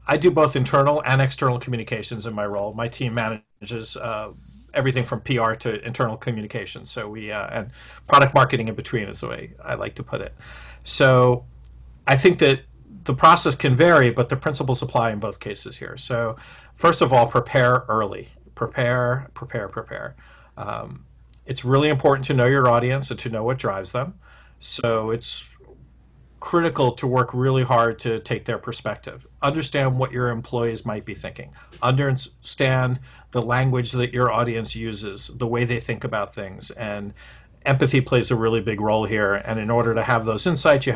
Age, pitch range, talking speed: 40-59, 115-135 Hz, 180 wpm